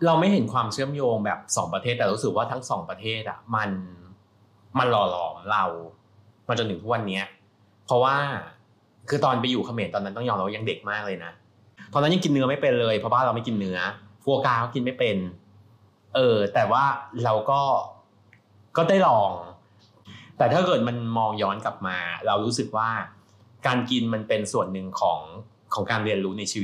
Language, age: Thai, 20-39